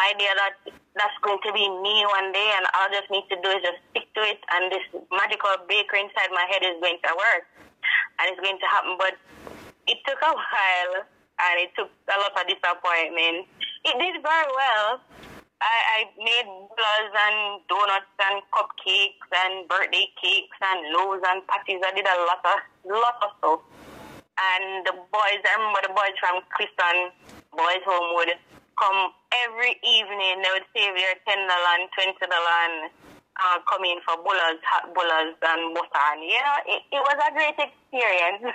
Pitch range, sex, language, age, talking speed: 180-225 Hz, female, English, 20-39, 180 wpm